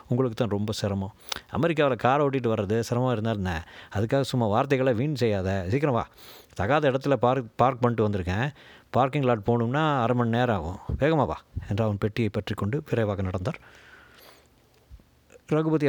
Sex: male